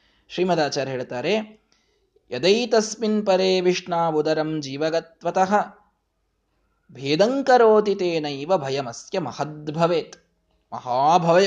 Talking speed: 60 wpm